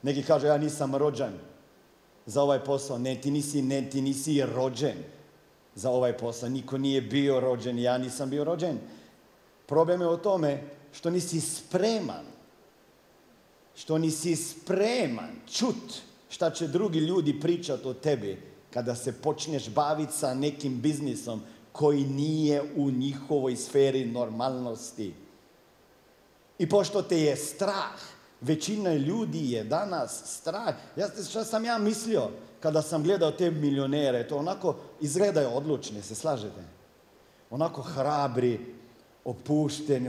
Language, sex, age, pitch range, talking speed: Croatian, male, 50-69, 130-170 Hz, 130 wpm